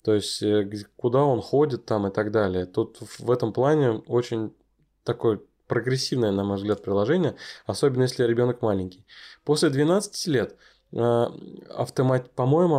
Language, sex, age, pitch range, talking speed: Russian, male, 20-39, 110-140 Hz, 135 wpm